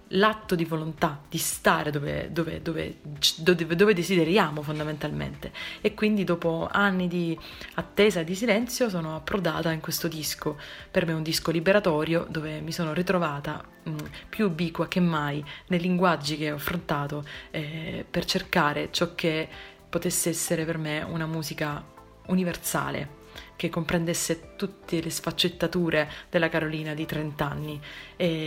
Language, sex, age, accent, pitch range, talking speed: Italian, female, 20-39, native, 165-195 Hz, 135 wpm